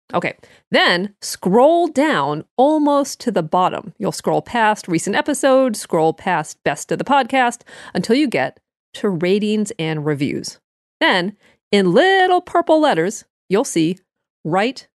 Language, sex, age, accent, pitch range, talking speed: English, female, 40-59, American, 175-250 Hz, 135 wpm